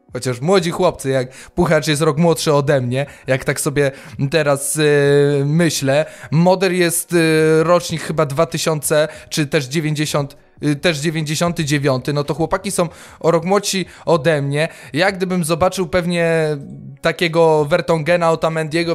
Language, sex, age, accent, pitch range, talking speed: Polish, male, 20-39, native, 145-175 Hz, 130 wpm